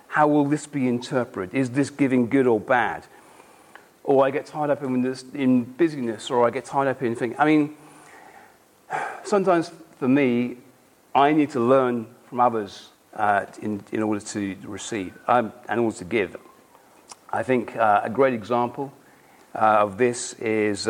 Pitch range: 115-140 Hz